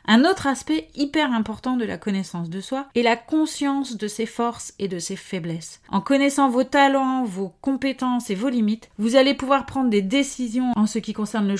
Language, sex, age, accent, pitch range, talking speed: French, female, 30-49, French, 205-255 Hz, 205 wpm